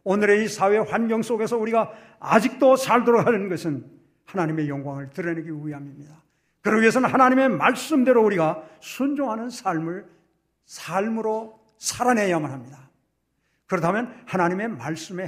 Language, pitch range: Korean, 160-225 Hz